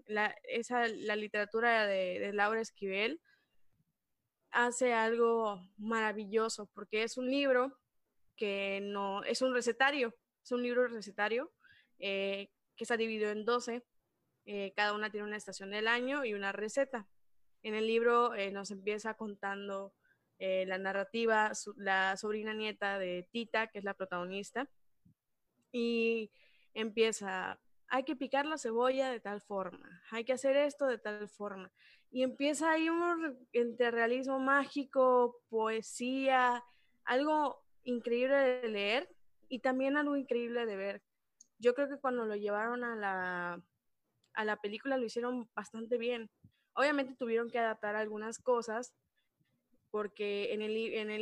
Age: 20-39